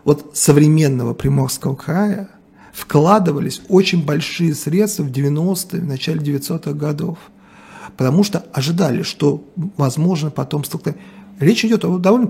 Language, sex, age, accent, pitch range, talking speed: Russian, male, 40-59, native, 150-195 Hz, 125 wpm